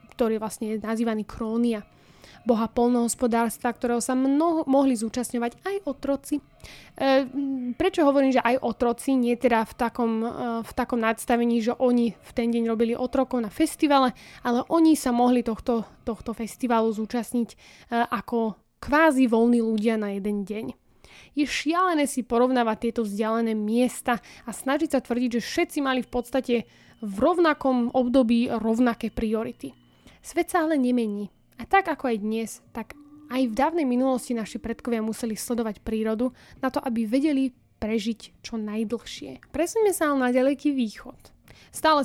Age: 20-39